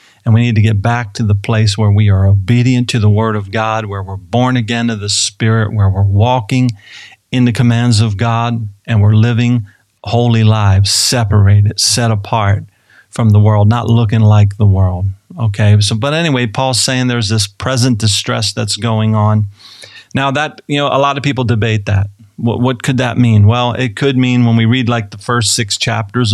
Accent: American